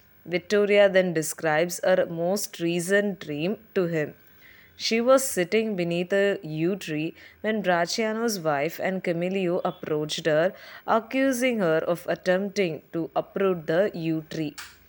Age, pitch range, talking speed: 20-39, 165-200 Hz, 130 wpm